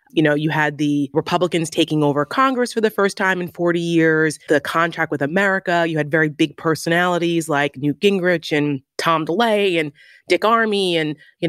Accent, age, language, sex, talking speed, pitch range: American, 30-49, English, female, 190 wpm, 150-195 Hz